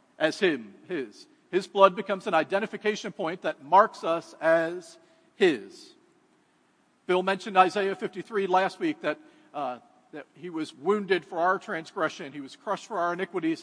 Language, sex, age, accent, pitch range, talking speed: English, male, 50-69, American, 160-205 Hz, 155 wpm